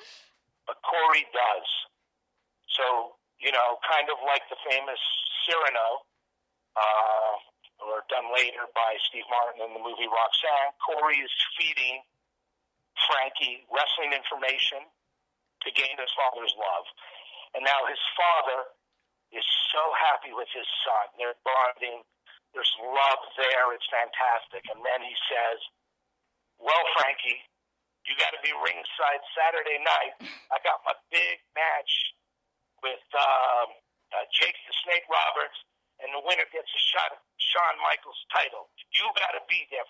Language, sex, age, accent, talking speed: English, male, 50-69, American, 135 wpm